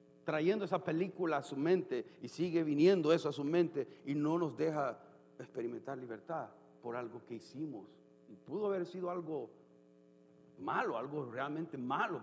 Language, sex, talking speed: Spanish, male, 155 wpm